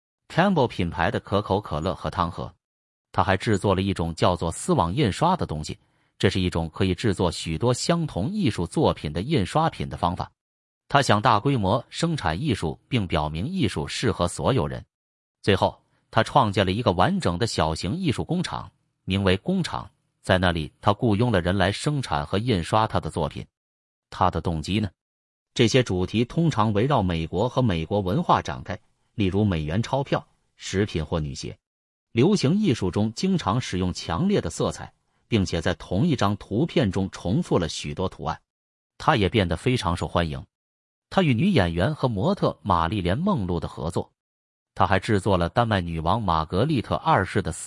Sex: male